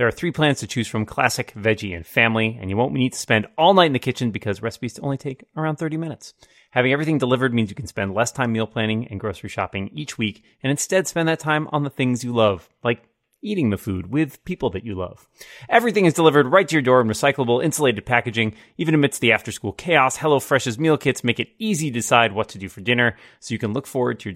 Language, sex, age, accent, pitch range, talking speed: English, male, 30-49, American, 105-140 Hz, 245 wpm